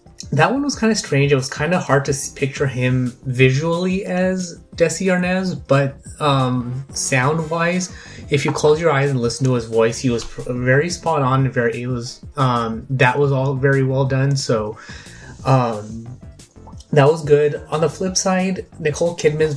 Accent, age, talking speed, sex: American, 20-39, 180 wpm, male